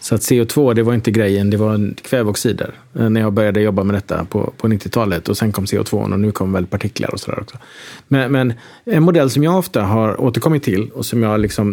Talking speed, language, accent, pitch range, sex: 220 wpm, Swedish, Norwegian, 100-120 Hz, male